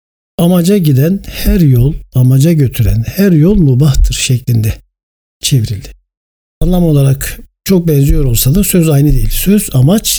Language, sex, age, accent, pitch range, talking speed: Turkish, male, 60-79, native, 120-160 Hz, 135 wpm